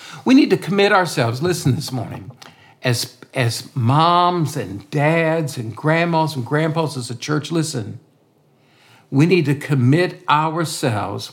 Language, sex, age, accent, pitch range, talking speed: English, male, 50-69, American, 130-165 Hz, 140 wpm